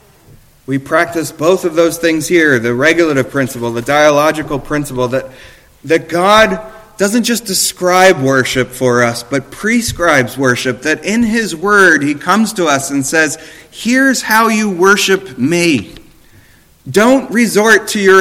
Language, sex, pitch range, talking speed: English, male, 150-210 Hz, 145 wpm